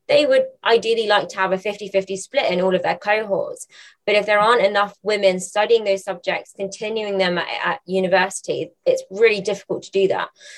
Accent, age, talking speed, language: British, 20-39, 195 wpm, English